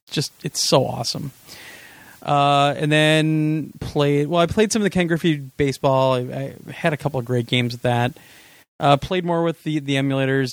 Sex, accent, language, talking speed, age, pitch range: male, American, English, 195 wpm, 30-49, 115-150 Hz